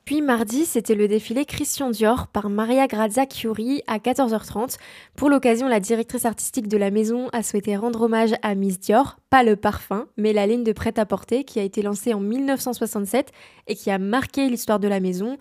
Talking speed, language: 195 wpm, French